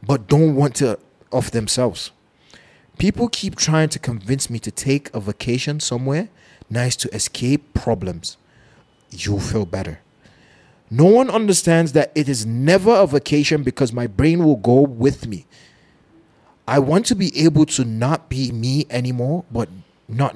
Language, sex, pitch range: English, male, 120-155 Hz